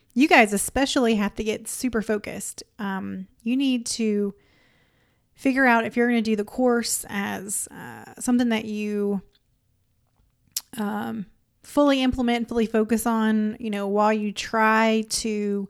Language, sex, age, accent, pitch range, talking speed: English, female, 20-39, American, 205-240 Hz, 145 wpm